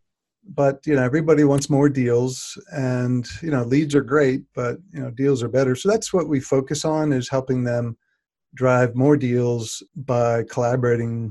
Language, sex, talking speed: English, male, 175 wpm